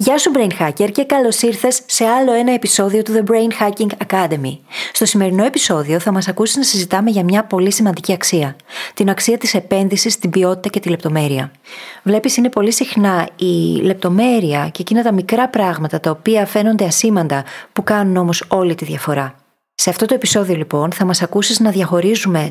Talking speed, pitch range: 185 wpm, 170-215 Hz